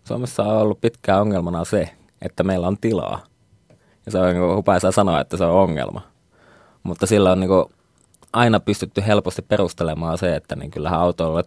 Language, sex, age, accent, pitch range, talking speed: Finnish, male, 20-39, native, 85-100 Hz, 175 wpm